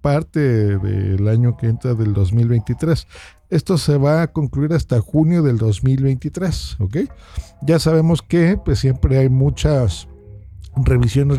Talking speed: 130 wpm